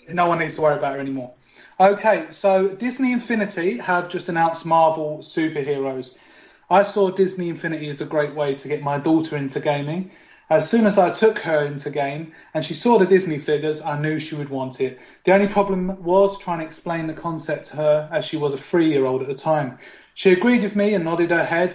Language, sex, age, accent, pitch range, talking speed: English, male, 30-49, British, 150-190 Hz, 215 wpm